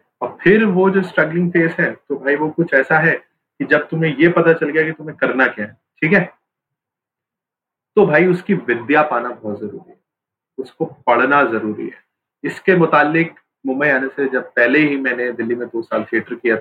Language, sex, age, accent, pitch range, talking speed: Hindi, male, 30-49, native, 135-170 Hz, 195 wpm